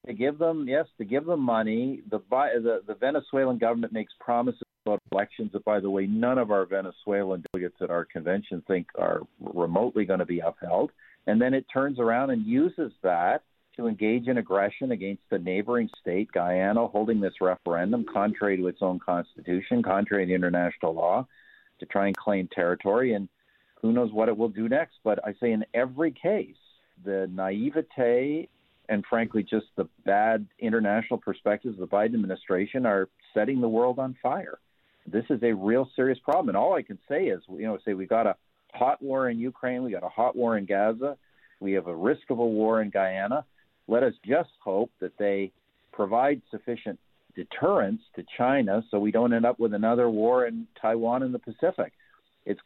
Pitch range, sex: 100-125 Hz, male